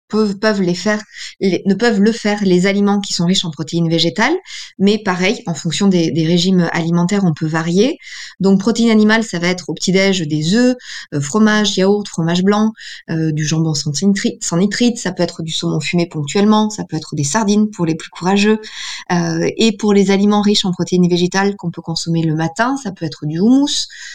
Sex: female